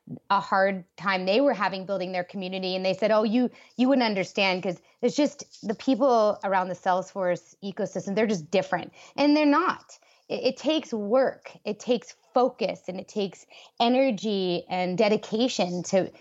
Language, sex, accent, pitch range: English, female, American, 180-225 Hz